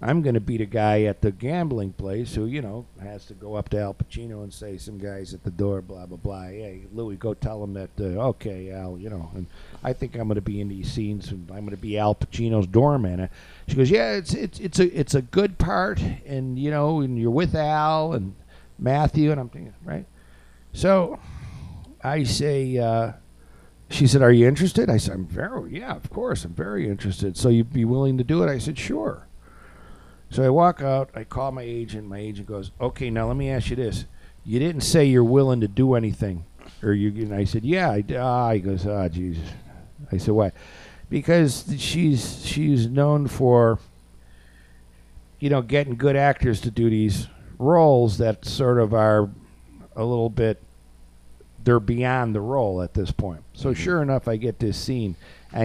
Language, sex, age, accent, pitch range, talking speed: English, male, 50-69, American, 95-130 Hz, 205 wpm